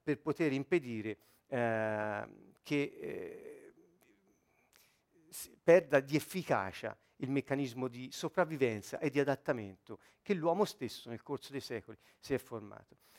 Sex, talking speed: male, 120 wpm